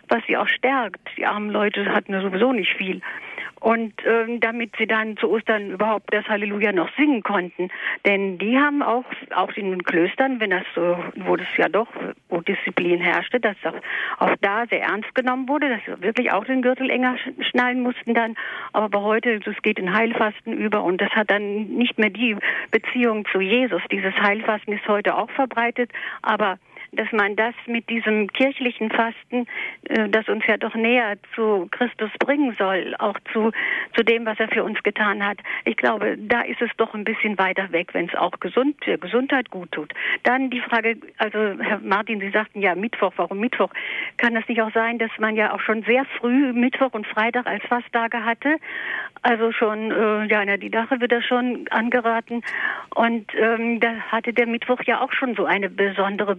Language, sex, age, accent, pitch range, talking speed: German, female, 50-69, German, 205-245 Hz, 195 wpm